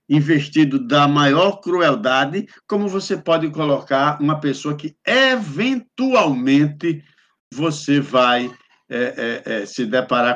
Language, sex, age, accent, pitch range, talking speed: Portuguese, male, 60-79, Brazilian, 145-220 Hz, 95 wpm